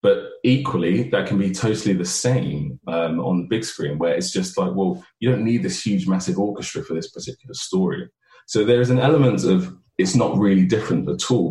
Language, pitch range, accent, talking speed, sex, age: English, 85-120 Hz, British, 215 wpm, male, 20-39